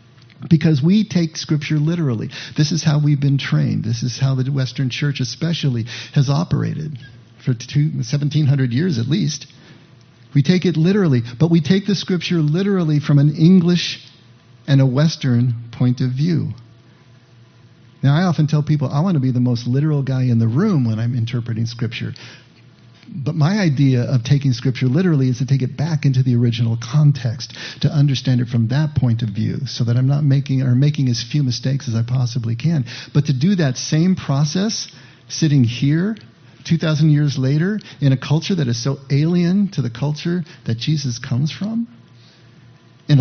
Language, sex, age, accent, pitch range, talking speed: English, male, 50-69, American, 125-155 Hz, 180 wpm